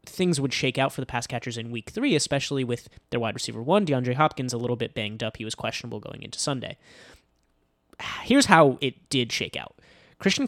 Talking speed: 210 wpm